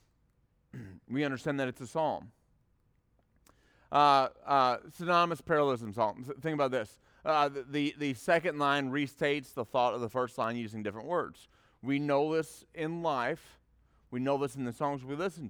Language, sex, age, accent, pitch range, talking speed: English, male, 40-59, American, 125-160 Hz, 170 wpm